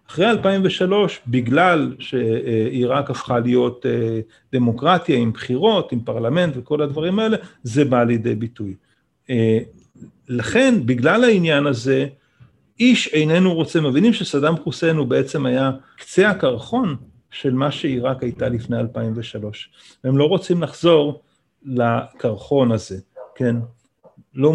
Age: 40-59